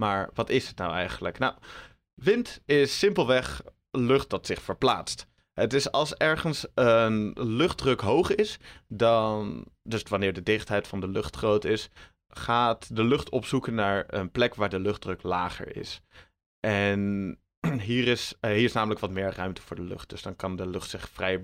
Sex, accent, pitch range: male, Dutch, 100-120 Hz